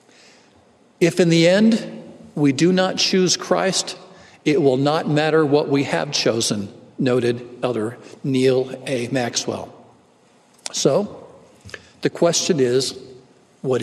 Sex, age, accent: male, 50-69, American